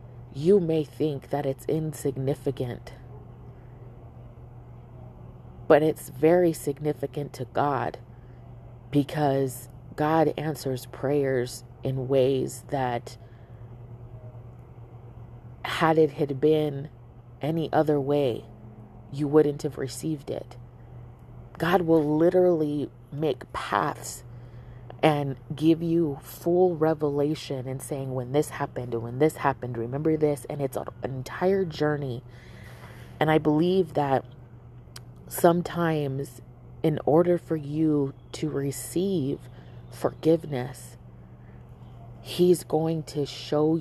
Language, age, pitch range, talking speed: English, 30-49, 120-155 Hz, 100 wpm